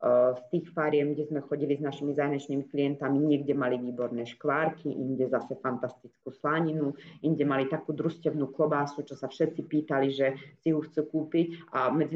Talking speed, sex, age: 170 wpm, female, 30-49